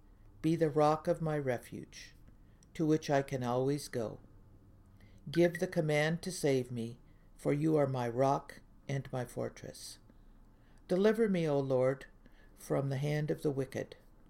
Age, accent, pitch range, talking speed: 60-79, American, 120-160 Hz, 150 wpm